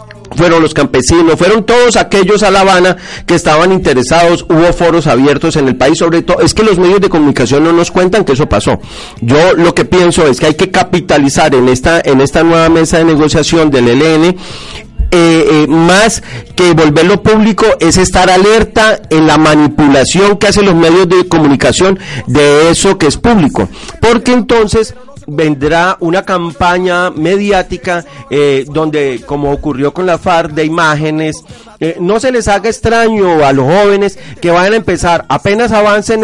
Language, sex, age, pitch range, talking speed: Spanish, male, 40-59, 160-195 Hz, 170 wpm